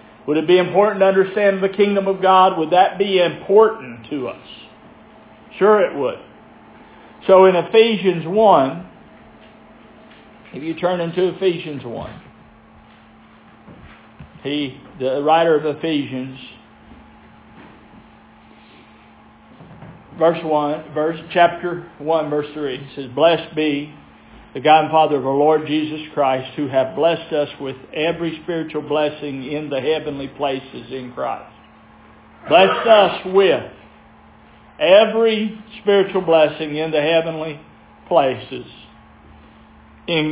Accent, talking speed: American, 120 wpm